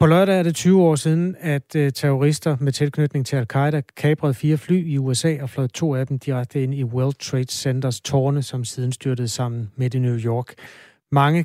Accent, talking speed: native, 200 wpm